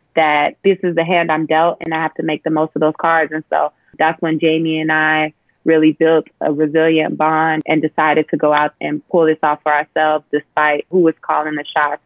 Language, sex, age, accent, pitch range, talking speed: English, female, 20-39, American, 160-180 Hz, 230 wpm